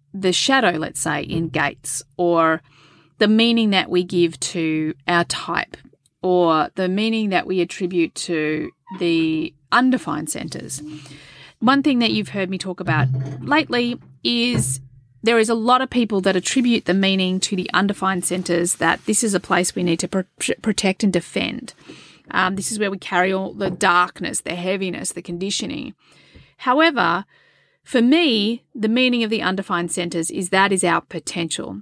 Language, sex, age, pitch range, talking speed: English, female, 30-49, 170-210 Hz, 165 wpm